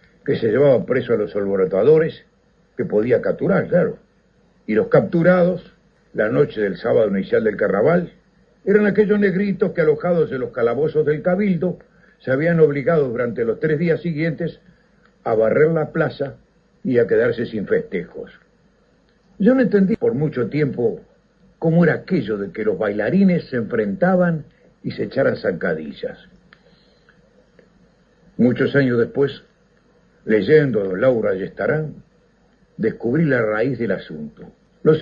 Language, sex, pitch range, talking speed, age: Spanish, male, 160-215 Hz, 140 wpm, 60-79